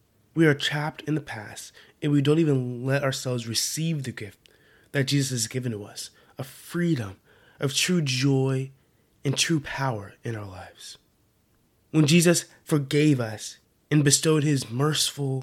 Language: English